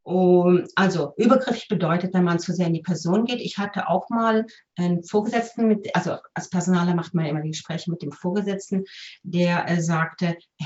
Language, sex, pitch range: German, female, 170-205 Hz